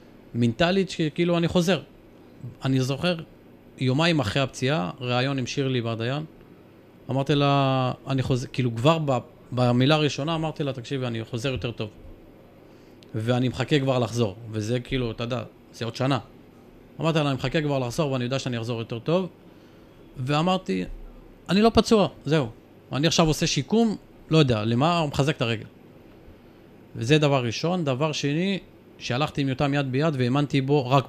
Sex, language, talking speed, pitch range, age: male, Hebrew, 155 wpm, 115-150 Hz, 30-49